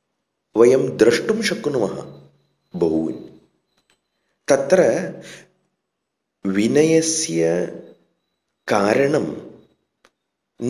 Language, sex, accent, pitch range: English, male, Indian, 105-175 Hz